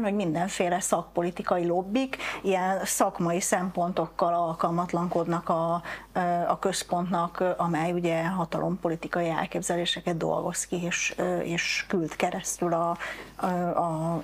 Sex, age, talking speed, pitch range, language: female, 30-49, 100 wpm, 170-190 Hz, Hungarian